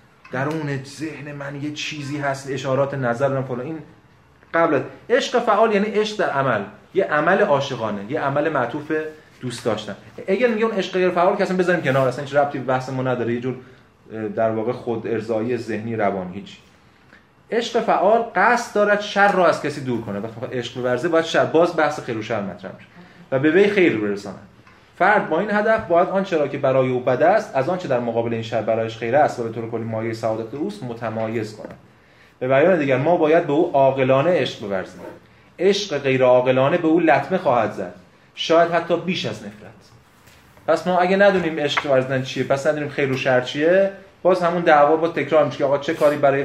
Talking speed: 195 wpm